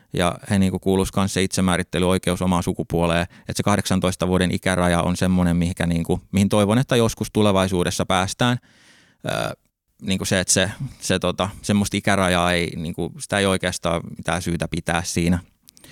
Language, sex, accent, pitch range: Finnish, male, native, 90-105 Hz